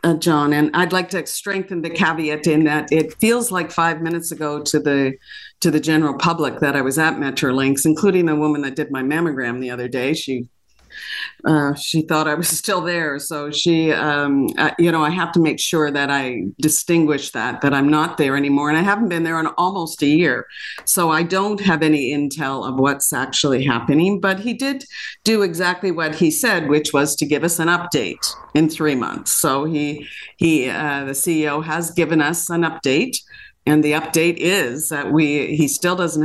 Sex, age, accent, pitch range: female, 50-69, American, 140-170 Hz